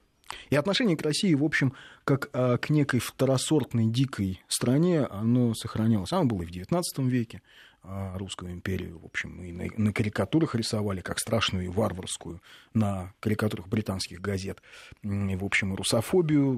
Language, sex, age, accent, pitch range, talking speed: Russian, male, 30-49, native, 95-125 Hz, 145 wpm